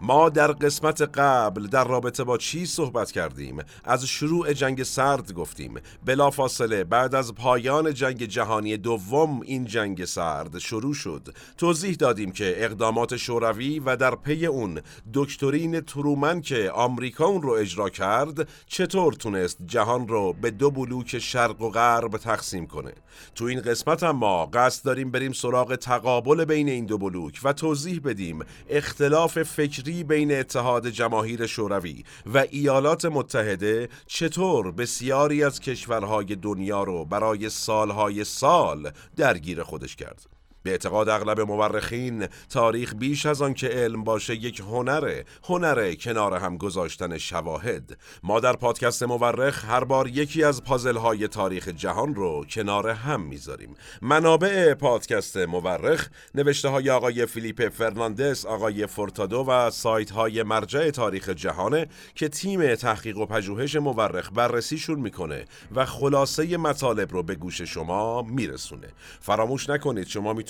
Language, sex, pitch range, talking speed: Persian, male, 110-145 Hz, 135 wpm